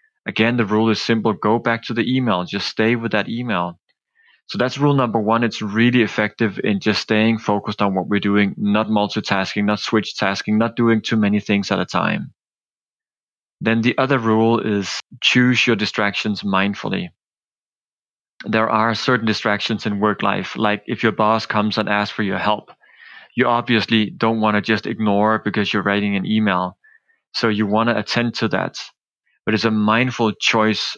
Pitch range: 105-115 Hz